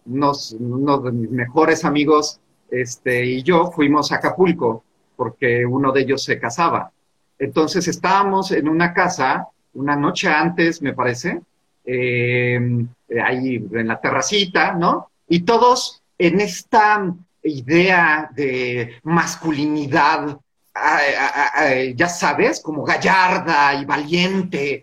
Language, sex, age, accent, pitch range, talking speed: Spanish, male, 40-59, Mexican, 130-200 Hz, 115 wpm